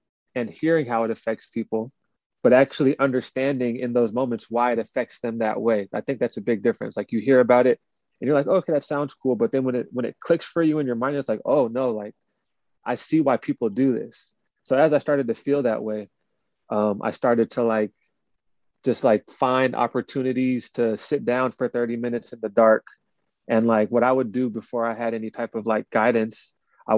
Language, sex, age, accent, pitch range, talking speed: English, male, 30-49, American, 115-130 Hz, 225 wpm